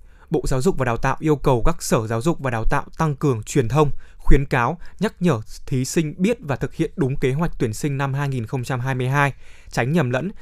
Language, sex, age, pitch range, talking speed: Vietnamese, male, 20-39, 130-160 Hz, 225 wpm